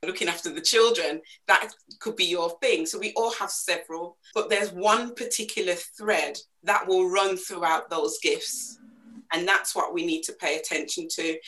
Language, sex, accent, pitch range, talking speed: English, female, British, 160-240 Hz, 180 wpm